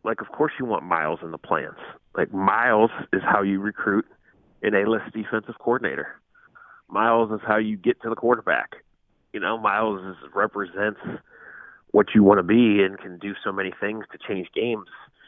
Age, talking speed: 30-49, 180 wpm